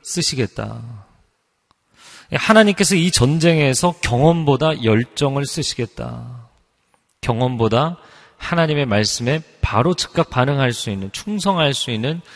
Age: 40-59